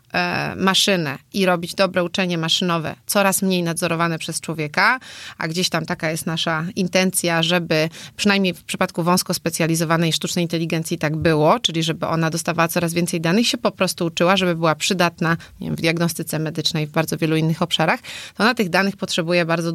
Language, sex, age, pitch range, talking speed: Polish, female, 30-49, 170-210 Hz, 175 wpm